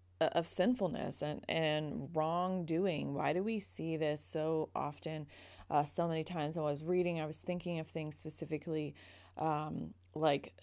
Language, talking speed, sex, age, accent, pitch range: English, 150 wpm, female, 30-49, American, 145-165 Hz